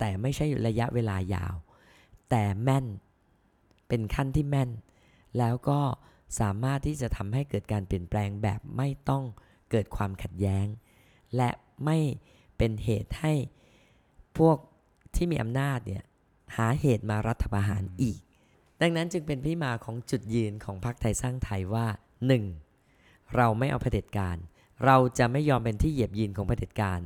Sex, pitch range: female, 100-135 Hz